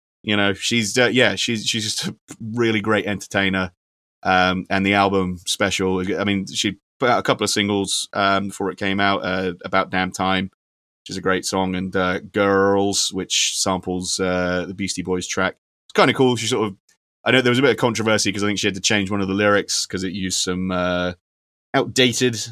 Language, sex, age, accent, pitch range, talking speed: English, male, 30-49, British, 90-105 Hz, 220 wpm